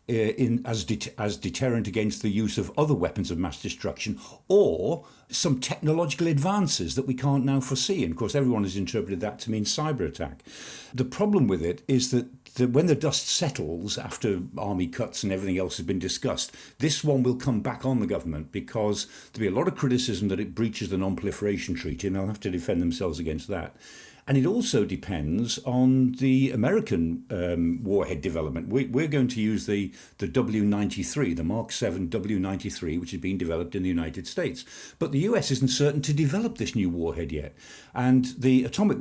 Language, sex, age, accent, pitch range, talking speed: English, male, 50-69, British, 100-140 Hz, 195 wpm